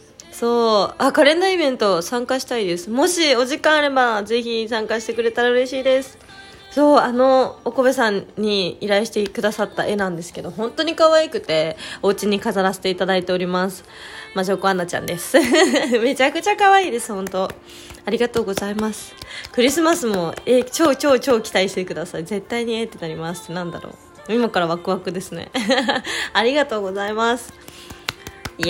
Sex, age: female, 20-39